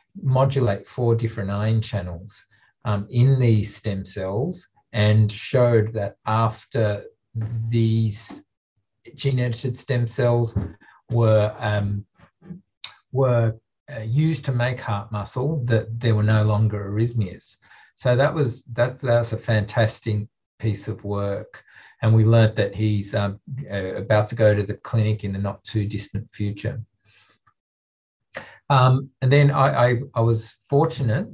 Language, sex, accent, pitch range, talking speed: English, male, Australian, 105-120 Hz, 135 wpm